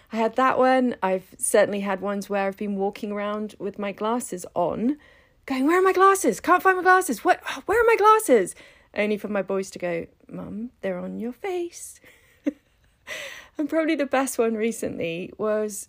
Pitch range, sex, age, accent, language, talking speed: 185-245 Hz, female, 40-59, British, English, 185 wpm